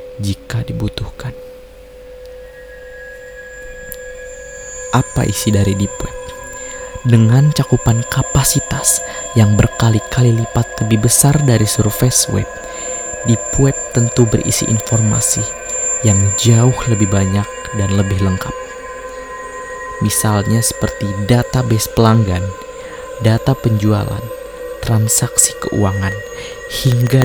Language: Indonesian